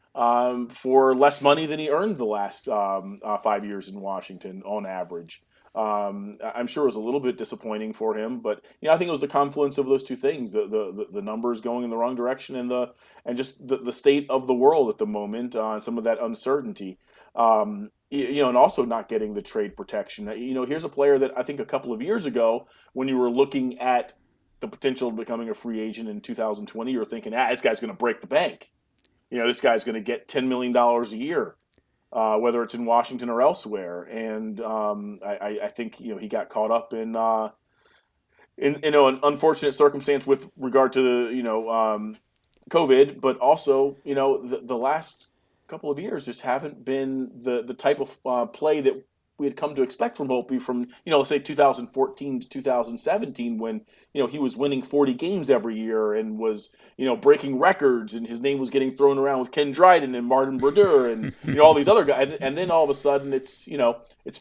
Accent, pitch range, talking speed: American, 115-140 Hz, 225 wpm